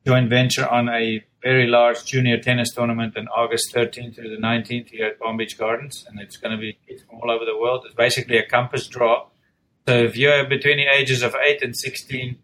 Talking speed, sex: 225 wpm, male